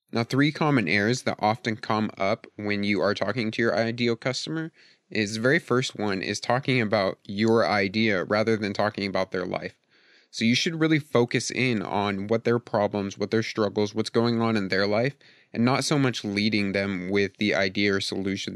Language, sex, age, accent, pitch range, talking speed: English, male, 30-49, American, 100-120 Hz, 200 wpm